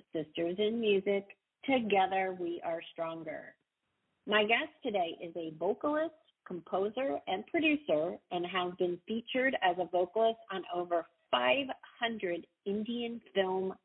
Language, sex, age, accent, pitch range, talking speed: English, female, 40-59, American, 175-230 Hz, 120 wpm